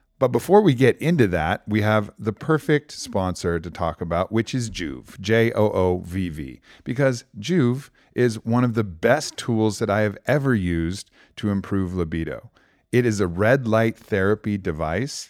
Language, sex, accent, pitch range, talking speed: English, male, American, 90-120 Hz, 175 wpm